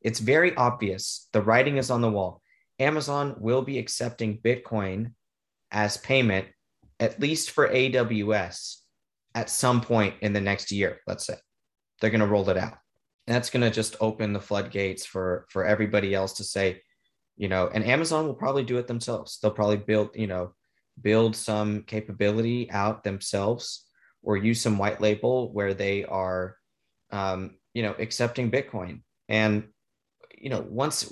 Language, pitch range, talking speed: English, 100-120 Hz, 165 wpm